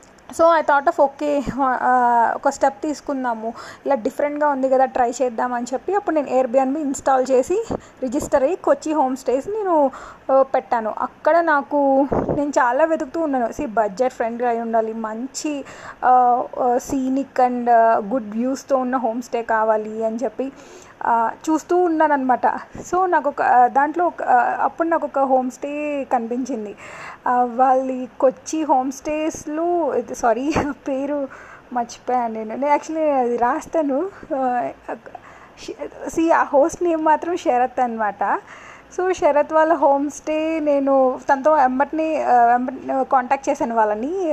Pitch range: 245-290 Hz